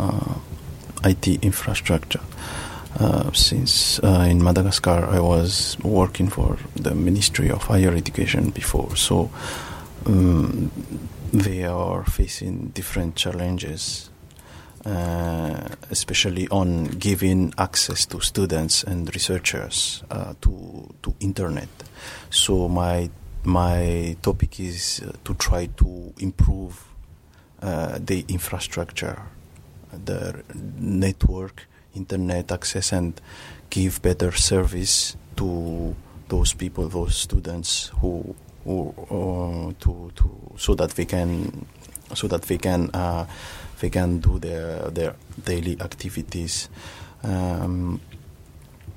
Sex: male